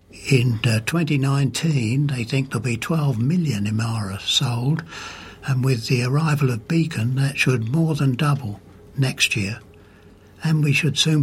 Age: 60-79